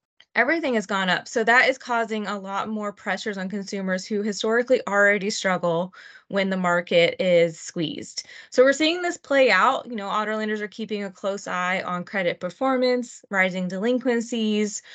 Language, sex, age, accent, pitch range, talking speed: English, female, 20-39, American, 185-215 Hz, 175 wpm